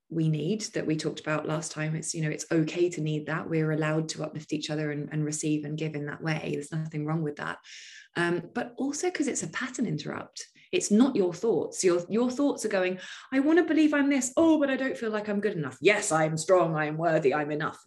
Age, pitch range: 20-39, 155-210 Hz